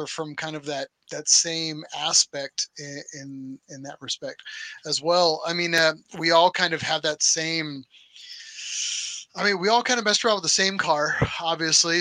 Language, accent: English, American